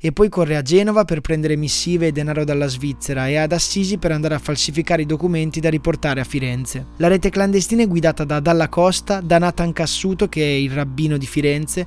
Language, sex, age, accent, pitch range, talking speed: Italian, male, 20-39, native, 150-175 Hz, 210 wpm